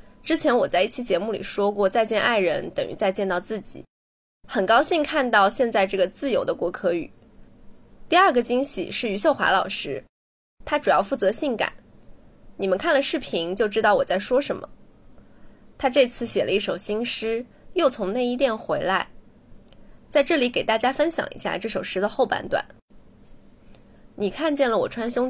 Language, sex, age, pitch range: Chinese, female, 20-39, 195-270 Hz